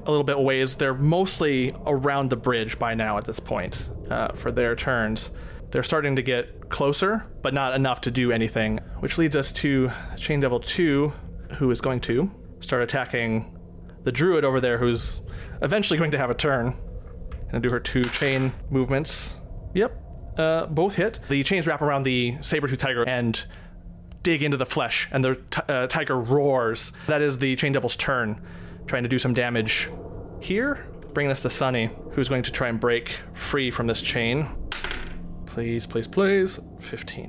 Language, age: English, 30-49